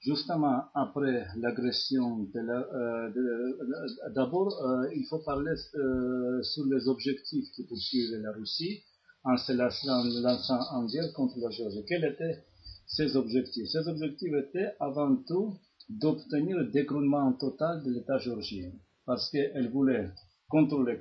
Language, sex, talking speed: French, male, 140 wpm